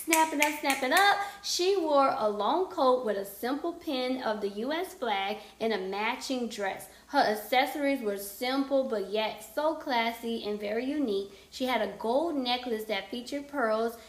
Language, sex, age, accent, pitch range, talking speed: English, female, 20-39, American, 220-280 Hz, 170 wpm